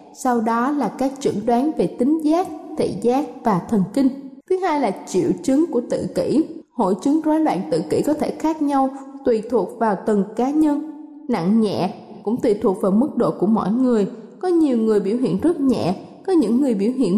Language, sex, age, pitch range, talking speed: Vietnamese, female, 20-39, 225-300 Hz, 215 wpm